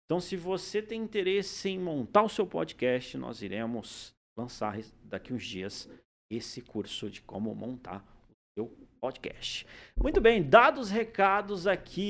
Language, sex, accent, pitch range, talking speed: Portuguese, male, Brazilian, 155-205 Hz, 150 wpm